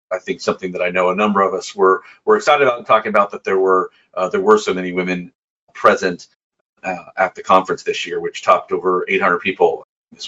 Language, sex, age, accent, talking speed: English, male, 40-59, American, 230 wpm